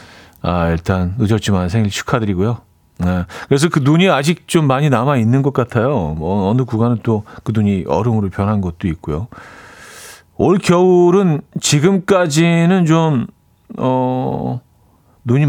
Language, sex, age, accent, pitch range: Korean, male, 40-59, native, 95-145 Hz